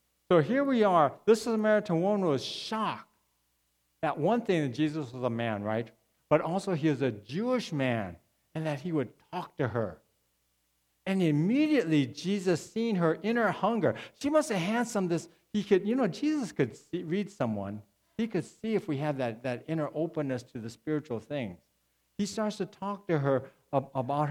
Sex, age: male, 60-79